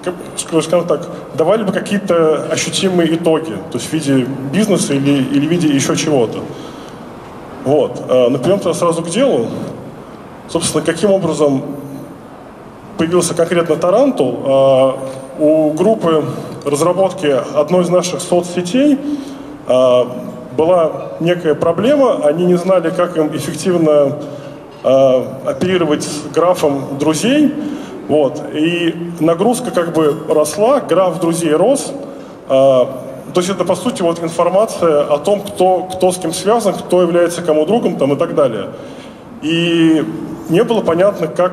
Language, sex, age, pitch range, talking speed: Russian, male, 20-39, 150-185 Hz, 120 wpm